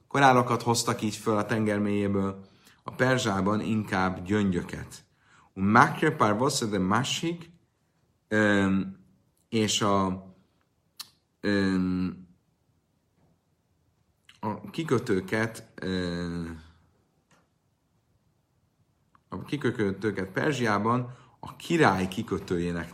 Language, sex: Hungarian, male